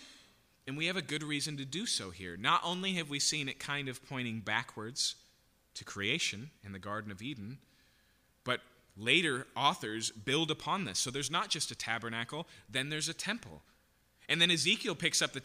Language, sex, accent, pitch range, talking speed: English, male, American, 100-160 Hz, 190 wpm